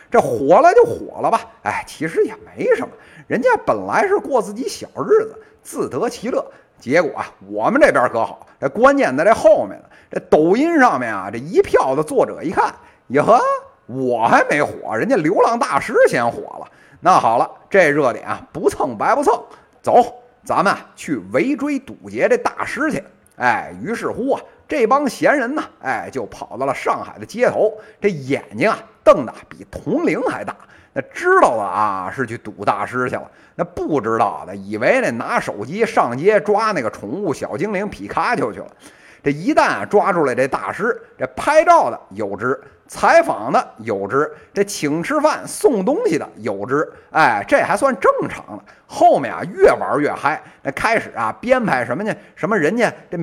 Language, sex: Chinese, male